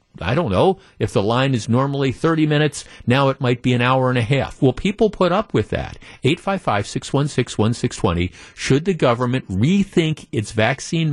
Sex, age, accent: male, 50-69, American